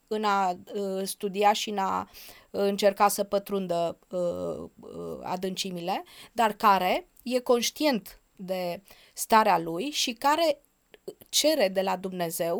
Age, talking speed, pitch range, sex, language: 20-39, 125 wpm, 195-250 Hz, female, Romanian